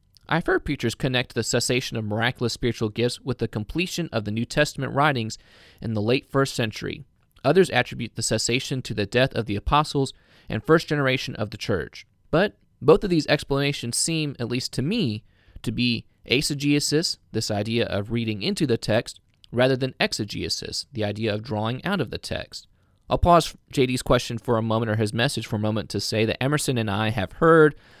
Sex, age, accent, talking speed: male, 20-39, American, 195 wpm